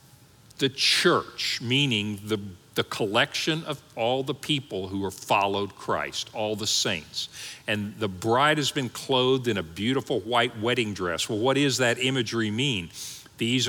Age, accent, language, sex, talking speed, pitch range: 50-69, American, English, male, 160 wpm, 105-140 Hz